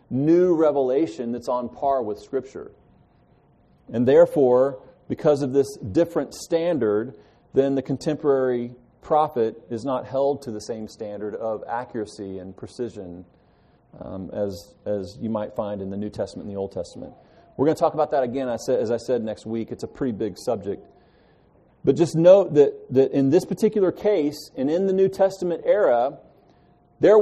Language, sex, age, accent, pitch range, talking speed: English, male, 40-59, American, 125-185 Hz, 170 wpm